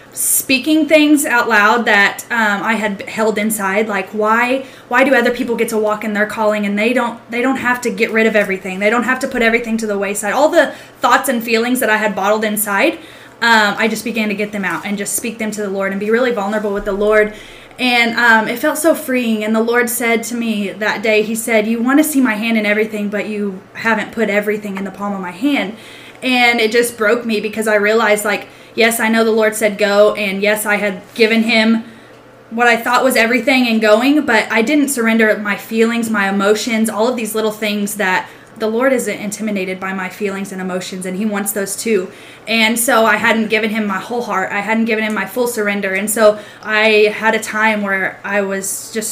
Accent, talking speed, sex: American, 235 wpm, female